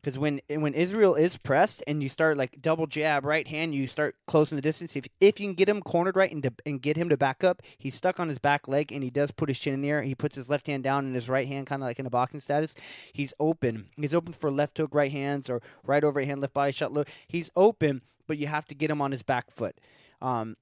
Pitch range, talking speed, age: 125-150 Hz, 285 wpm, 20-39